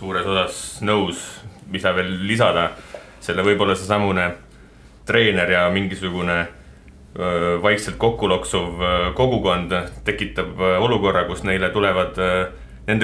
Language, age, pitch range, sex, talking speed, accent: English, 30-49, 95-120 Hz, male, 100 wpm, Finnish